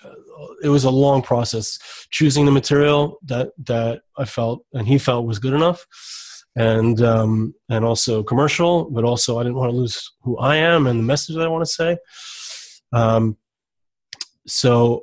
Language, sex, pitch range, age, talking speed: English, male, 115-145 Hz, 30-49, 170 wpm